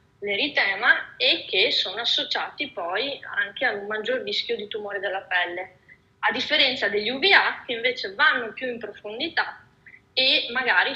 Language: Italian